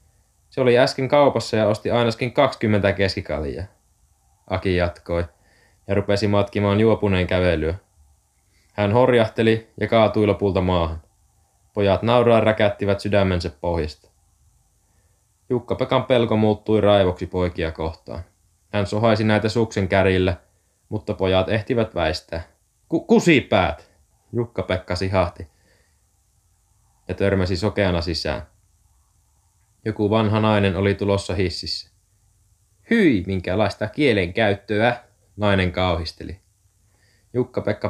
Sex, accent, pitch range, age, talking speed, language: male, native, 90-110 Hz, 20-39, 100 wpm, Finnish